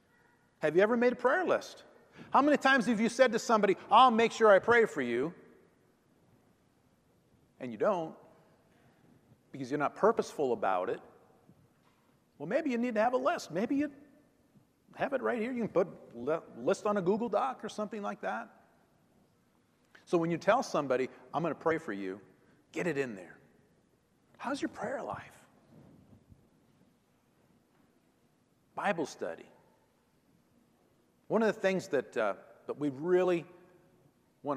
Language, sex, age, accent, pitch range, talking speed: English, male, 50-69, American, 145-215 Hz, 160 wpm